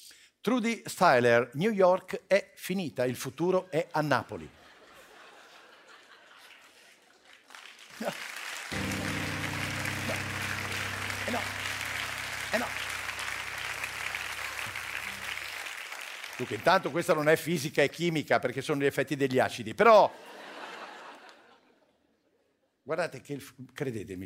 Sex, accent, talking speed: male, native, 90 wpm